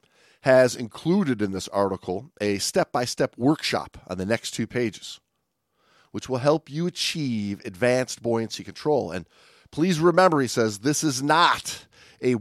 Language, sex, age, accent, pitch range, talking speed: English, male, 40-59, American, 100-140 Hz, 145 wpm